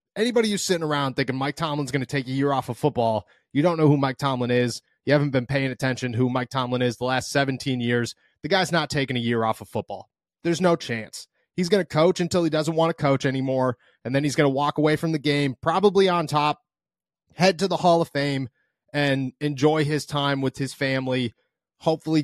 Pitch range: 130-175 Hz